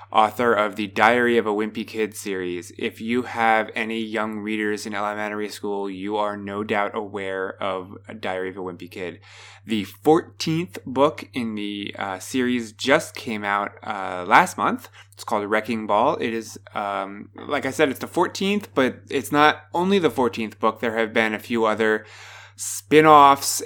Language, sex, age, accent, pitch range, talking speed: English, male, 20-39, American, 100-125 Hz, 175 wpm